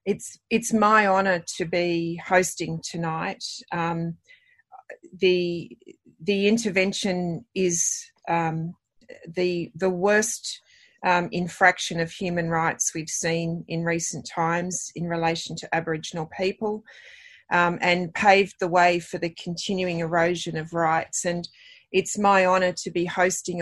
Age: 30-49